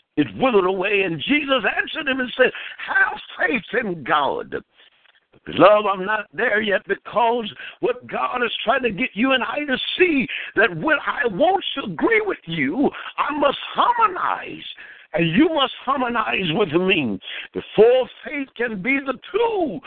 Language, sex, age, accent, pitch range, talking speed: English, male, 60-79, American, 230-340 Hz, 155 wpm